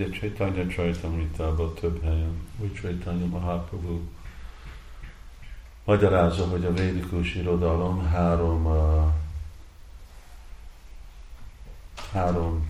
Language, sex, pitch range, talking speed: Hungarian, male, 80-90 Hz, 70 wpm